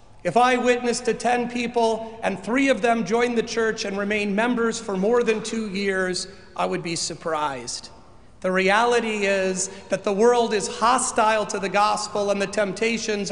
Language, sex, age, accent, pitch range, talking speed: English, male, 40-59, American, 195-235 Hz, 175 wpm